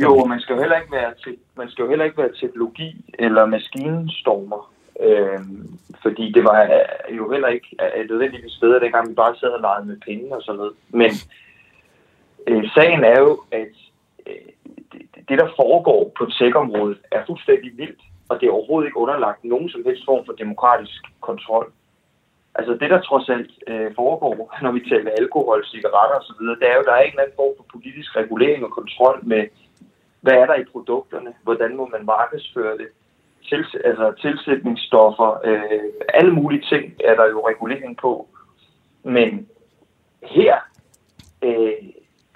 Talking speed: 175 wpm